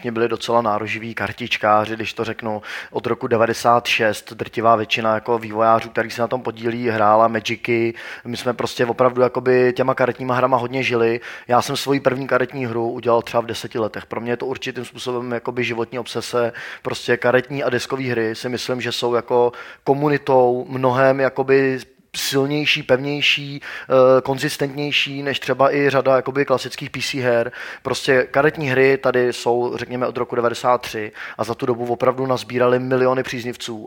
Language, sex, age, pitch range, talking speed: Czech, male, 20-39, 115-135 Hz, 160 wpm